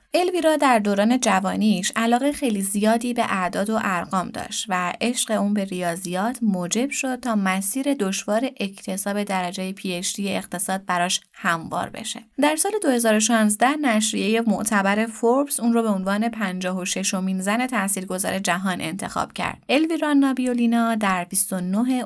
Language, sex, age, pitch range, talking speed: Persian, female, 20-39, 190-240 Hz, 145 wpm